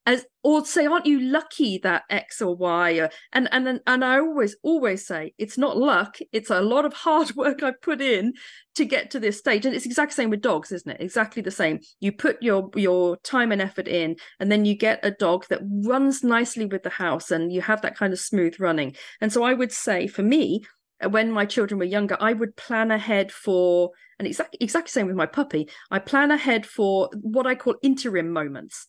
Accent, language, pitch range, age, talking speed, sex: British, English, 185-250 Hz, 40-59, 225 wpm, female